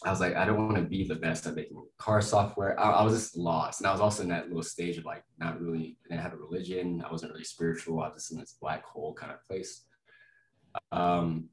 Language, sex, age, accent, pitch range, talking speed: English, male, 20-39, American, 80-100 Hz, 265 wpm